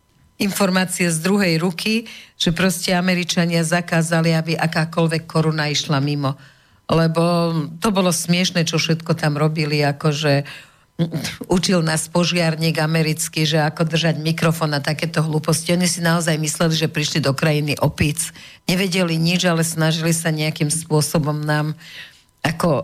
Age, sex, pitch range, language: 50-69, female, 150-175 Hz, Slovak